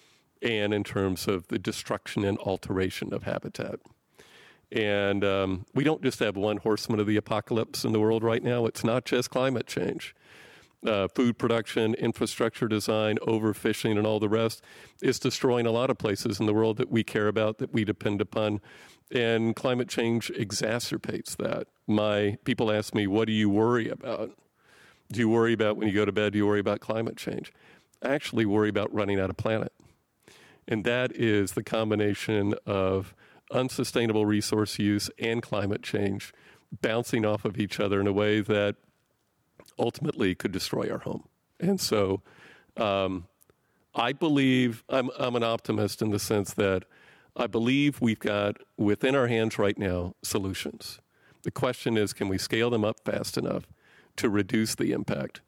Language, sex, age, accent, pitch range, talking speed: English, male, 50-69, American, 105-115 Hz, 170 wpm